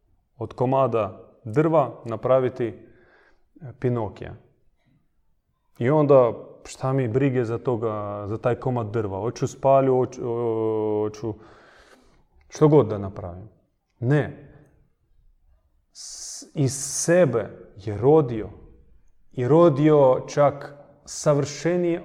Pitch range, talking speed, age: 110-140 Hz, 90 wpm, 30-49